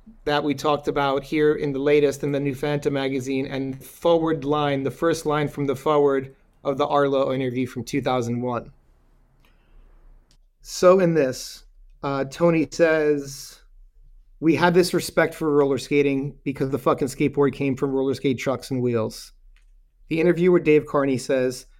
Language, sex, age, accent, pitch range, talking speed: English, male, 30-49, American, 130-170 Hz, 155 wpm